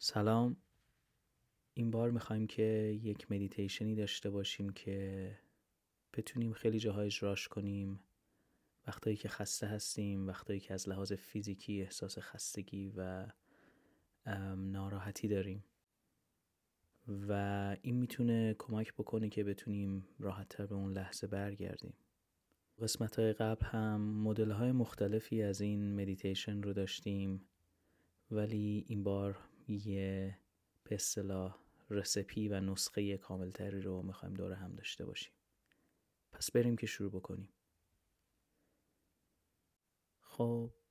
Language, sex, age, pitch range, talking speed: Persian, male, 20-39, 95-110 Hz, 105 wpm